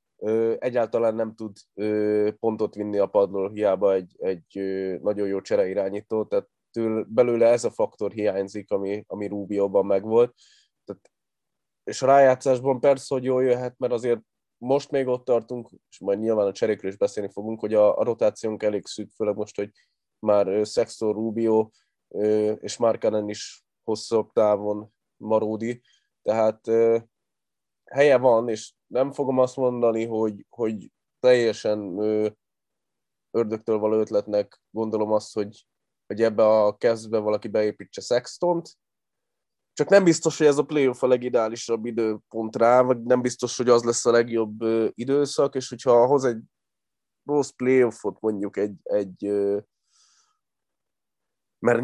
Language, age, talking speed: Hungarian, 20-39, 140 wpm